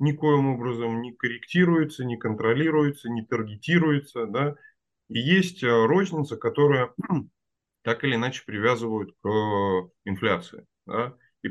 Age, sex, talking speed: 20-39, male, 110 wpm